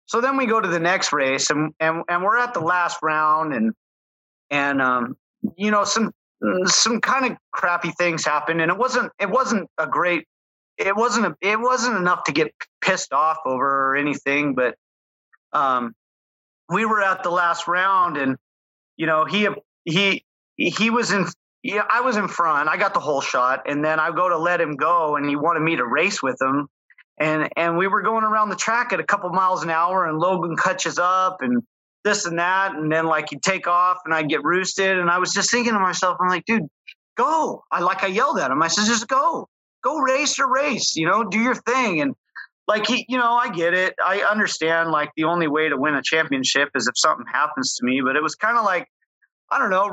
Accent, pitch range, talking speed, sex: American, 155-205 Hz, 220 wpm, male